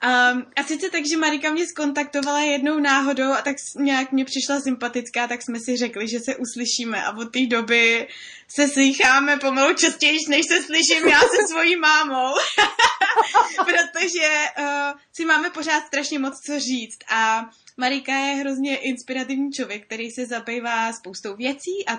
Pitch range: 215-275 Hz